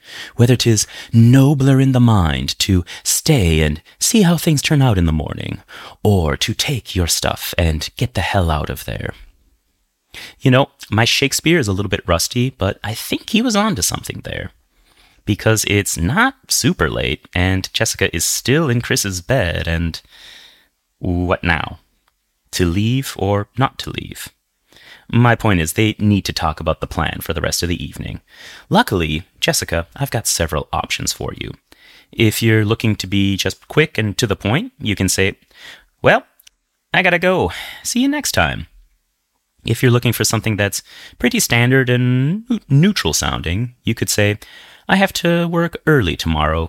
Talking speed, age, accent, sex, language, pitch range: 170 wpm, 30-49, American, male, English, 90-135 Hz